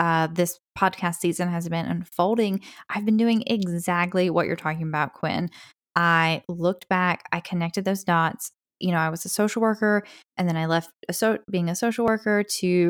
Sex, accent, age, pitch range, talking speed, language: female, American, 10-29, 170-210 Hz, 190 wpm, English